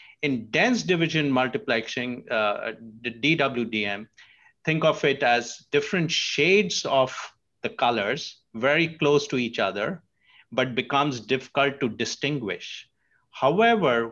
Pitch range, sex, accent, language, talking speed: 120-155 Hz, male, Indian, English, 115 wpm